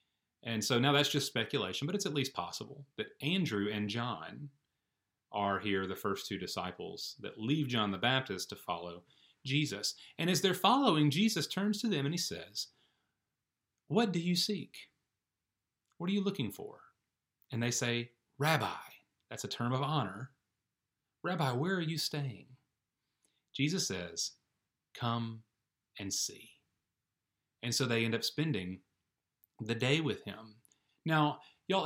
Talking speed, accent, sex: 150 wpm, American, male